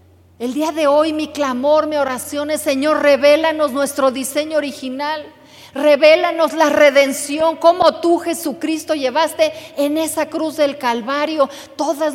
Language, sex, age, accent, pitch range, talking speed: Spanish, female, 40-59, Mexican, 255-310 Hz, 135 wpm